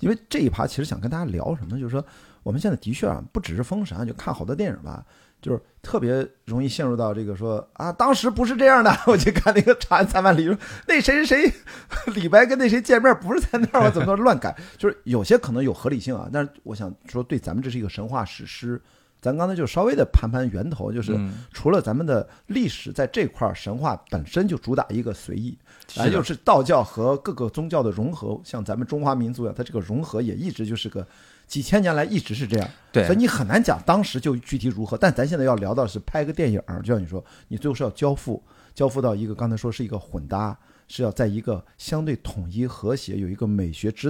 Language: Chinese